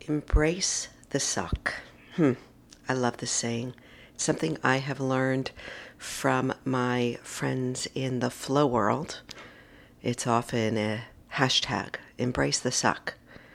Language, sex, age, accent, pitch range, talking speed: English, female, 50-69, American, 110-130 Hz, 120 wpm